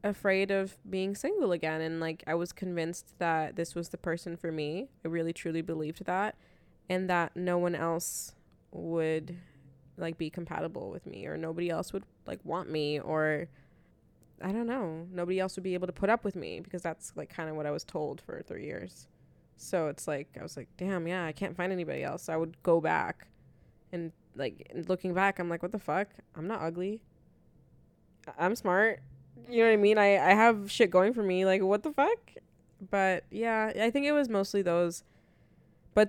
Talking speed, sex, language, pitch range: 205 wpm, female, English, 165-195 Hz